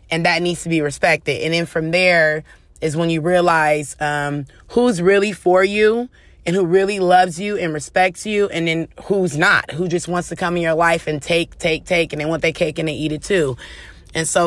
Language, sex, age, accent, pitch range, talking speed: English, female, 20-39, American, 160-190 Hz, 230 wpm